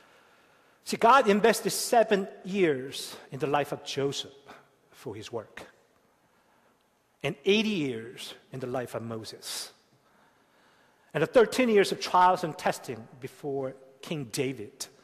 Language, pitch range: Korean, 125-175 Hz